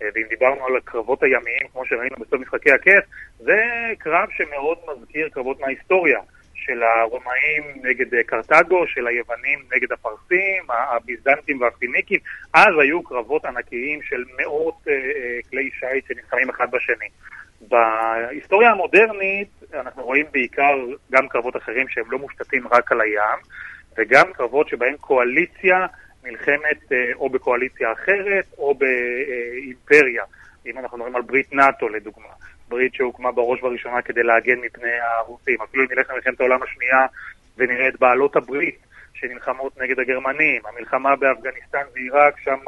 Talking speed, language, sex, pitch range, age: 130 wpm, Hebrew, male, 125-185 Hz, 30-49